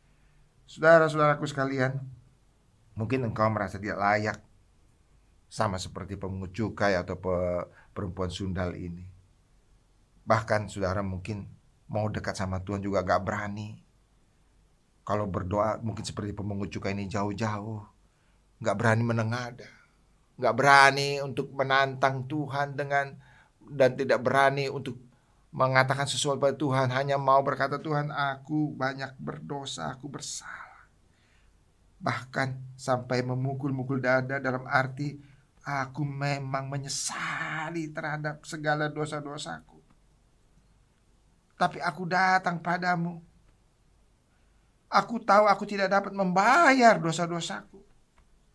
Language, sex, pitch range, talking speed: English, male, 105-145 Hz, 100 wpm